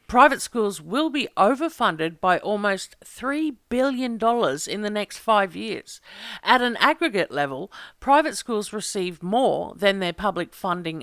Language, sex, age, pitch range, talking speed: English, female, 50-69, 175-245 Hz, 140 wpm